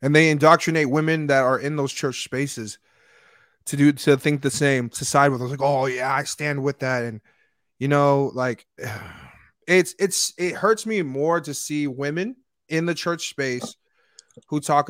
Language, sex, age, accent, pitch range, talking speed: English, male, 20-39, American, 130-160 Hz, 185 wpm